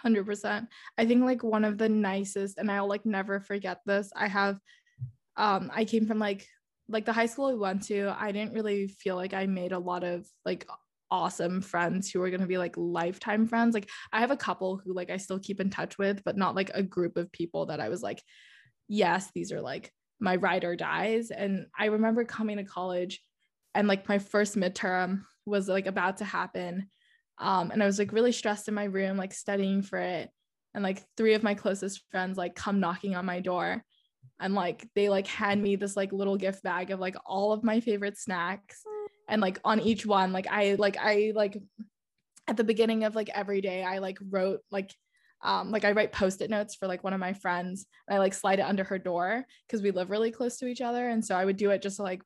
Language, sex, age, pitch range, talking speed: English, female, 20-39, 190-215 Hz, 230 wpm